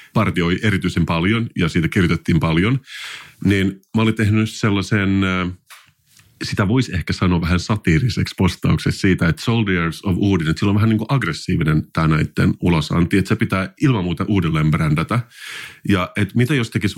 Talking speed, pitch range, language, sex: 165 wpm, 85-110 Hz, Finnish, male